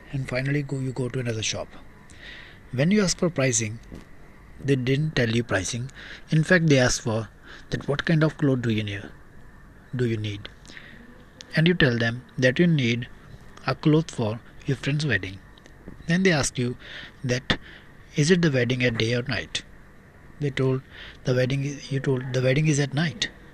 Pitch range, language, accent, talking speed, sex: 115-150 Hz, Hindi, native, 180 wpm, male